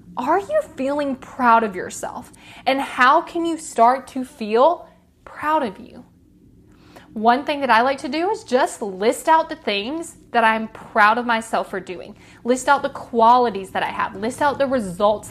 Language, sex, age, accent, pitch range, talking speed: English, female, 20-39, American, 210-275 Hz, 185 wpm